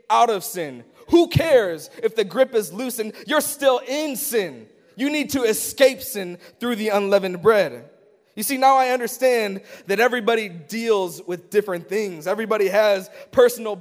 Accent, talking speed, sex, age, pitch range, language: American, 160 wpm, male, 20-39, 175-245 Hz, English